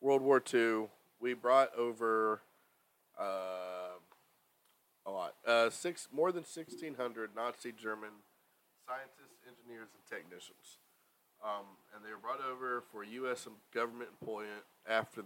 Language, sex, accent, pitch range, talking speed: English, male, American, 110-140 Hz, 120 wpm